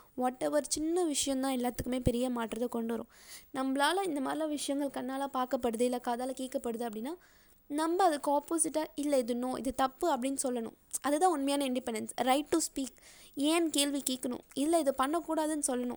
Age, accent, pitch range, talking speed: 20-39, native, 245-295 Hz, 150 wpm